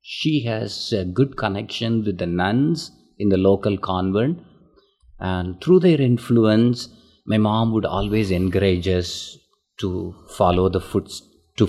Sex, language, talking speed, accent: male, English, 140 wpm, Indian